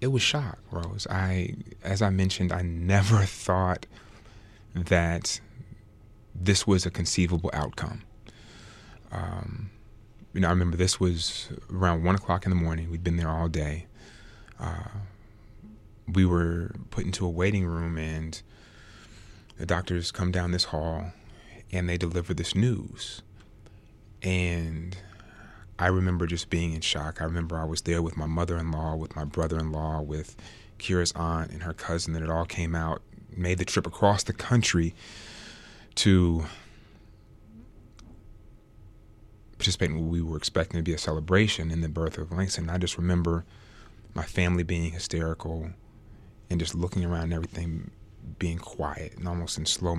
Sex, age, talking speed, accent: male, 30-49, 150 wpm, American